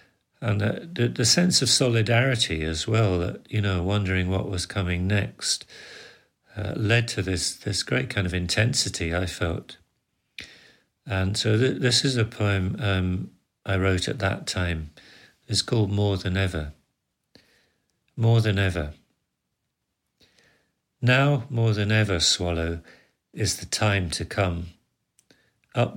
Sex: male